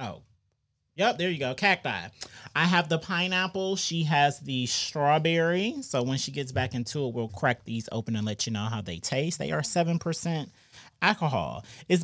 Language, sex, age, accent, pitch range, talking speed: English, male, 30-49, American, 105-155 Hz, 185 wpm